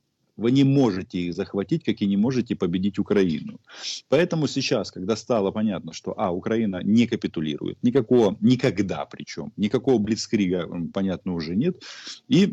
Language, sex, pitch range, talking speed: Russian, male, 100-135 Hz, 145 wpm